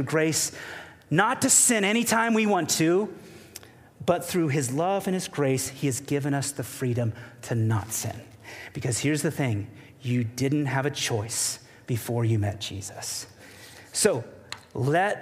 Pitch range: 120-165 Hz